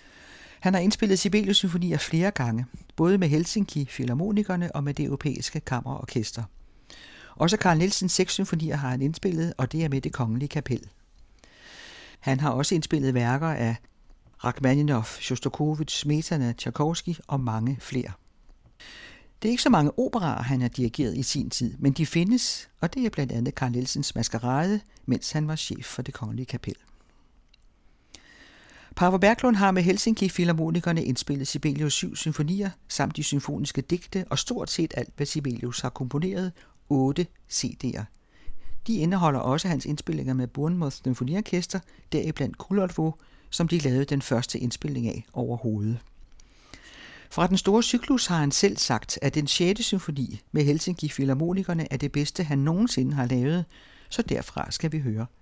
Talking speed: 155 wpm